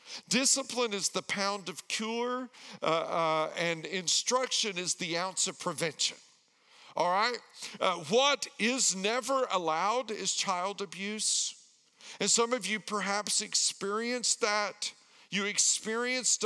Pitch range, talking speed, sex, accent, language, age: 180-230 Hz, 125 wpm, male, American, English, 50-69